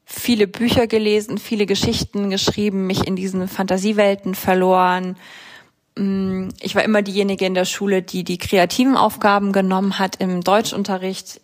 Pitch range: 185-210 Hz